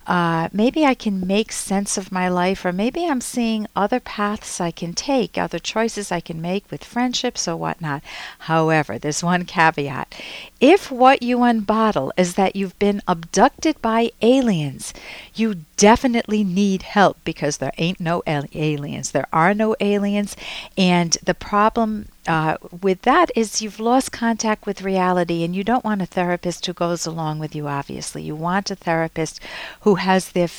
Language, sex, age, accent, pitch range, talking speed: English, female, 50-69, American, 165-215 Hz, 170 wpm